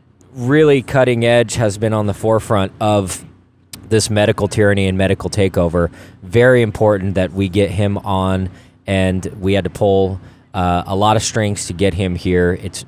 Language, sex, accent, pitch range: English, male, American, 95-120 Hz